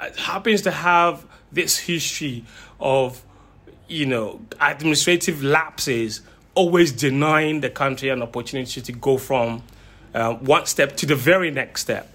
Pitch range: 130-180 Hz